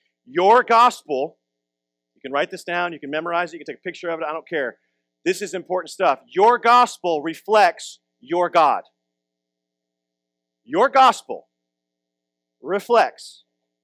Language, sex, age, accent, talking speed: English, male, 40-59, American, 145 wpm